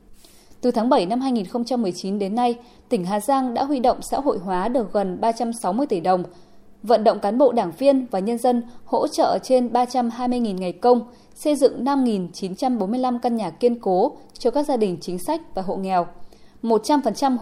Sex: female